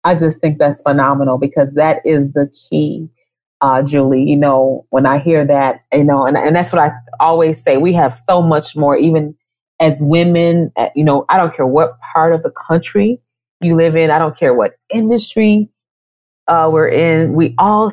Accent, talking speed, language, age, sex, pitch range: American, 195 wpm, English, 30-49, female, 140-175 Hz